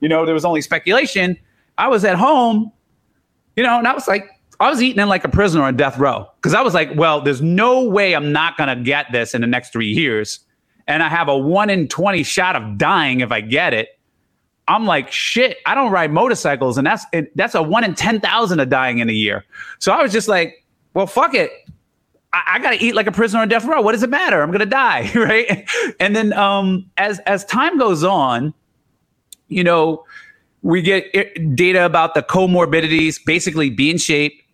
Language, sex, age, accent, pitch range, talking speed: English, male, 30-49, American, 140-195 Hz, 220 wpm